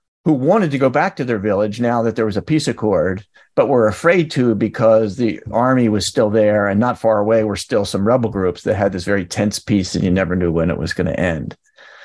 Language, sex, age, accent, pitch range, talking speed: English, male, 50-69, American, 105-135 Hz, 250 wpm